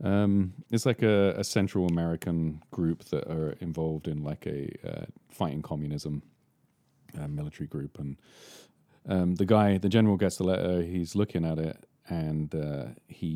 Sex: male